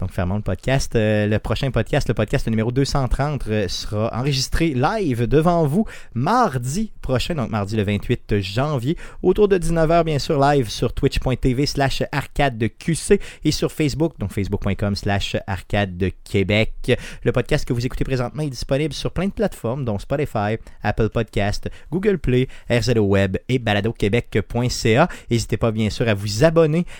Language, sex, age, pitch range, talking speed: French, male, 30-49, 105-145 Hz, 165 wpm